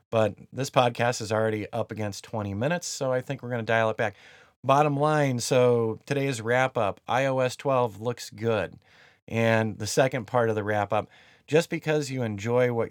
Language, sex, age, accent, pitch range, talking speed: English, male, 30-49, American, 110-130 Hz, 180 wpm